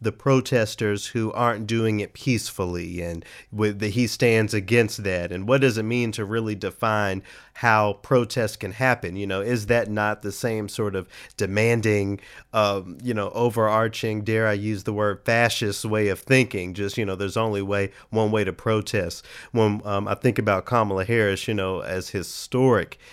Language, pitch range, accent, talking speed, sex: English, 100-115 Hz, American, 180 wpm, male